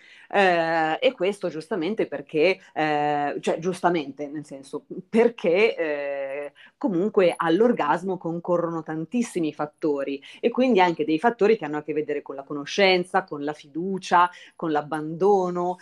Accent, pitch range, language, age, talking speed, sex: native, 150-185 Hz, Italian, 30-49, 135 wpm, female